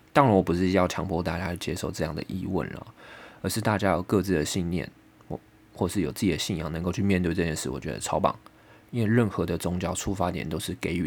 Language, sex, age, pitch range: Chinese, male, 20-39, 85-105 Hz